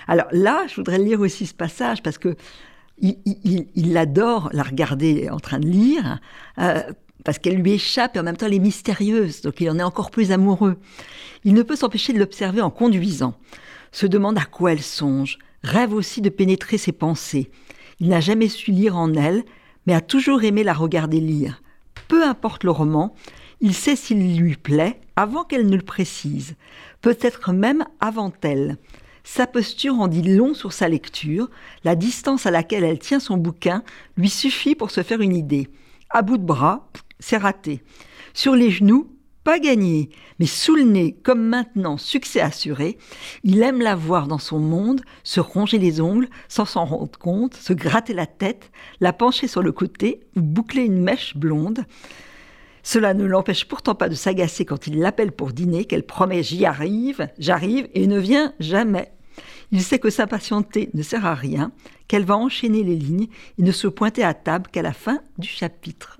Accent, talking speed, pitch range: French, 190 wpm, 170-225 Hz